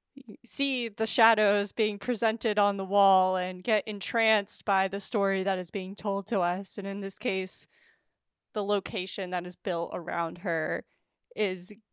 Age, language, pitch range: 10-29, English, 190-225 Hz